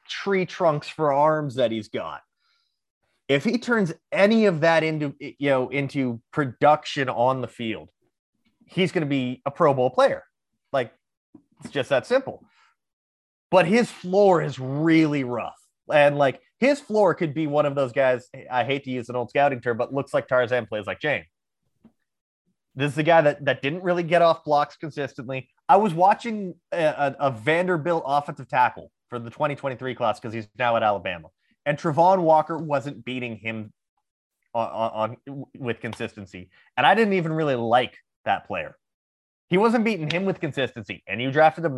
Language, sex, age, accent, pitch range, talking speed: English, male, 30-49, American, 130-175 Hz, 180 wpm